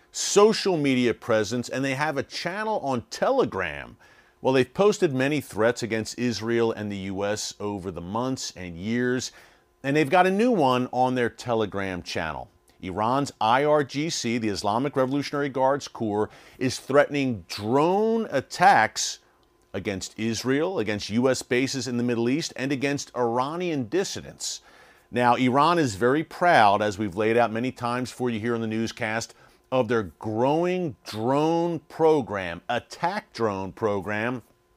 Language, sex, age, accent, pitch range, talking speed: English, male, 40-59, American, 115-145 Hz, 145 wpm